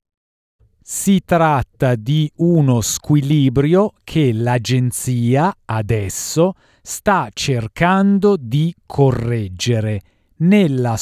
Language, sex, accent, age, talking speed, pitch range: Italian, male, native, 40-59, 70 wpm, 115-160 Hz